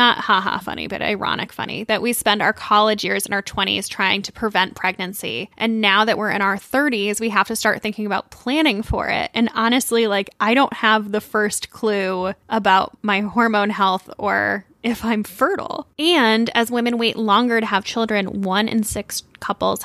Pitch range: 205-240 Hz